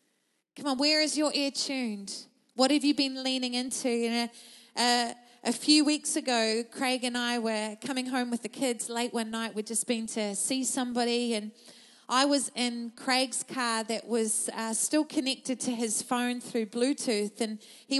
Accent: Australian